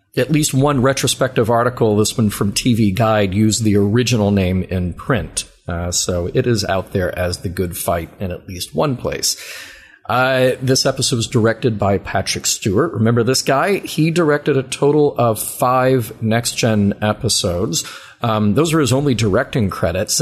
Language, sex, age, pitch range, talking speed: English, male, 40-59, 100-130 Hz, 170 wpm